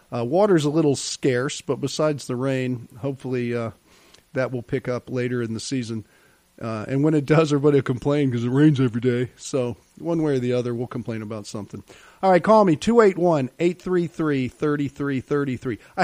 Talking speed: 180 wpm